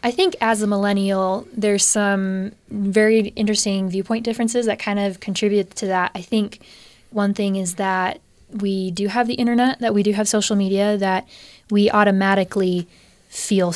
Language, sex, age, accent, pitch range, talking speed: English, female, 20-39, American, 195-215 Hz, 165 wpm